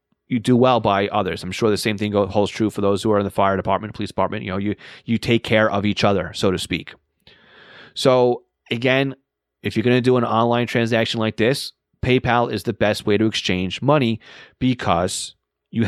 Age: 30-49